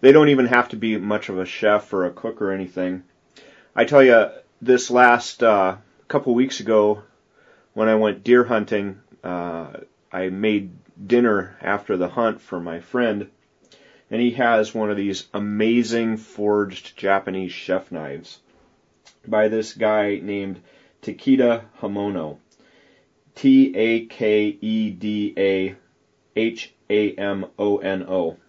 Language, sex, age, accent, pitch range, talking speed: English, male, 30-49, American, 95-115 Hz, 120 wpm